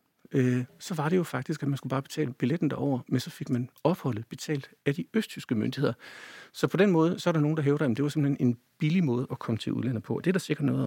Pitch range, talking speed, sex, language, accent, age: 125-160 Hz, 270 wpm, male, Danish, native, 60-79